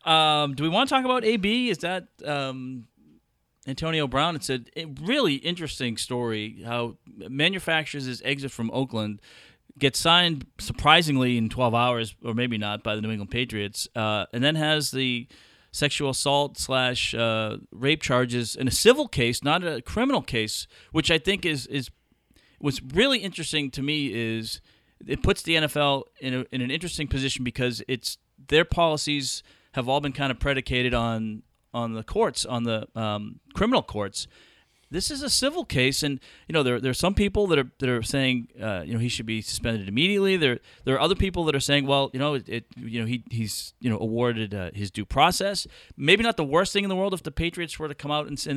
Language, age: English, 40-59